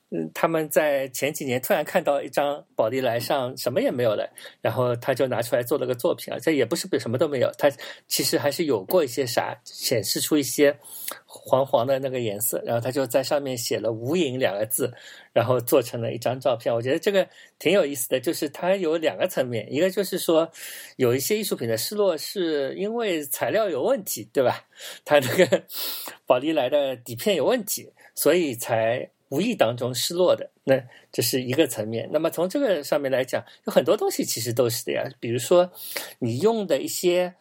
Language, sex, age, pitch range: Chinese, male, 50-69, 130-190 Hz